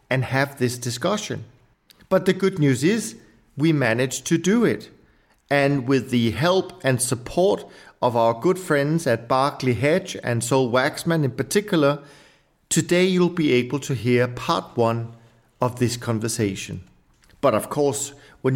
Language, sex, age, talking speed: English, male, 50-69, 150 wpm